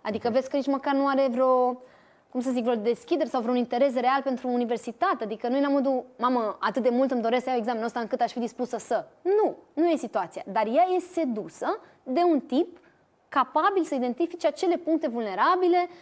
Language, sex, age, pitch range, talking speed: Romanian, female, 20-39, 215-275 Hz, 215 wpm